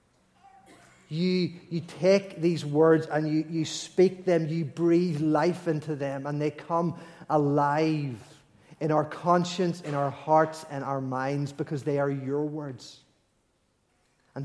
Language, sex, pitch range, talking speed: English, male, 140-180 Hz, 140 wpm